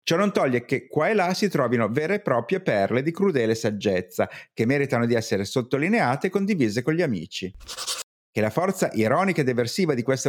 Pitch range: 115-165 Hz